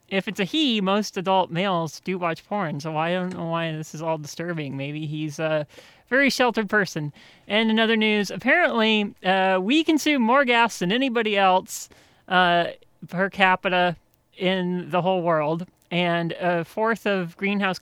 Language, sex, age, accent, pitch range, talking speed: English, male, 30-49, American, 170-205 Hz, 165 wpm